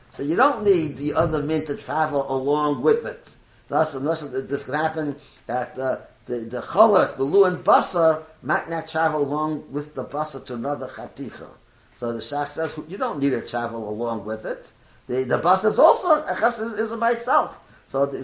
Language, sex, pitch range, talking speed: English, male, 125-170 Hz, 190 wpm